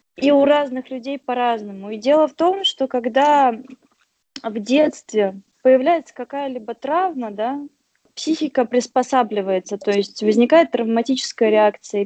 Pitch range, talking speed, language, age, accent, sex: 225-270 Hz, 120 wpm, Russian, 20-39, native, female